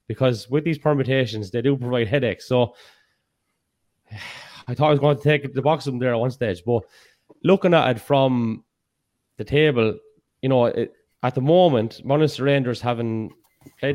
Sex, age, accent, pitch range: male, 20-39, Irish, 115-140 Hz